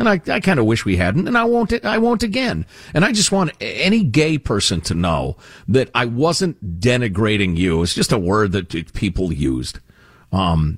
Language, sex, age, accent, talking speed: English, male, 50-69, American, 200 wpm